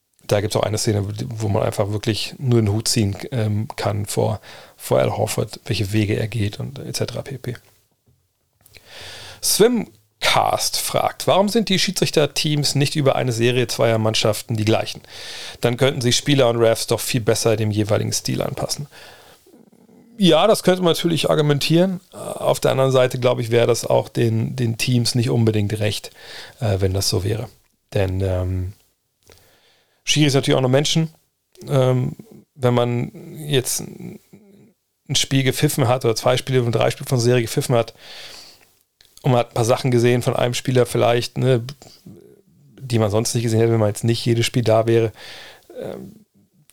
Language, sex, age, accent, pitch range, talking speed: German, male, 40-59, German, 110-135 Hz, 170 wpm